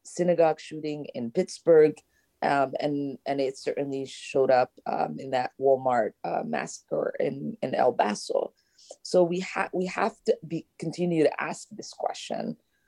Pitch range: 135-180 Hz